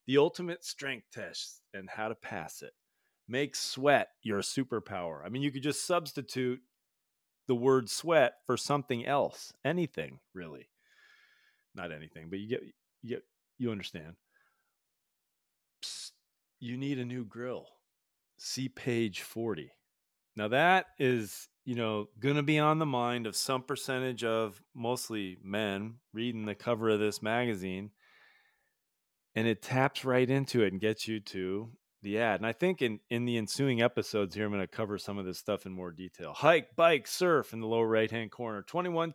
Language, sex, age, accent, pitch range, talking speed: English, male, 40-59, American, 110-150 Hz, 170 wpm